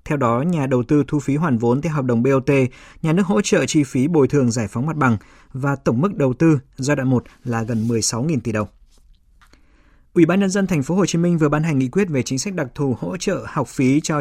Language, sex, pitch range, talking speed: Vietnamese, male, 125-165 Hz, 260 wpm